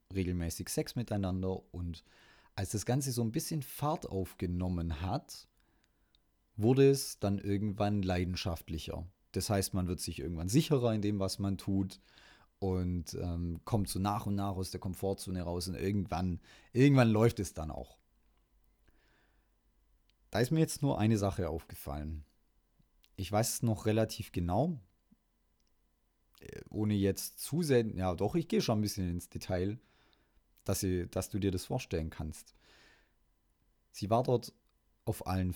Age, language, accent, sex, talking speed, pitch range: 30-49, German, German, male, 145 wpm, 90-110 Hz